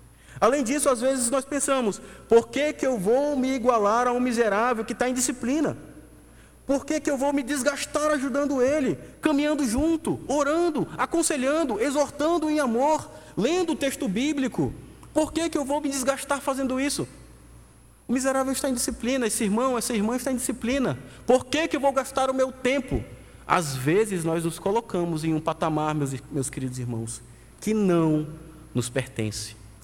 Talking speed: 170 wpm